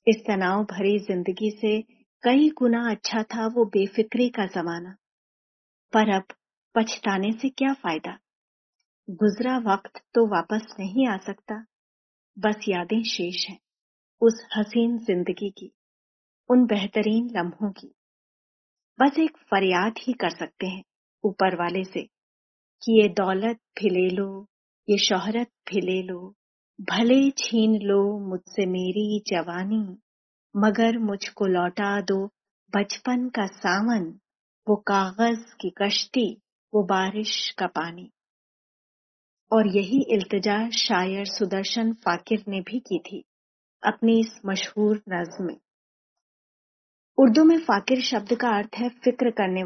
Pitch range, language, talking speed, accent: 195-230 Hz, Hindi, 125 wpm, native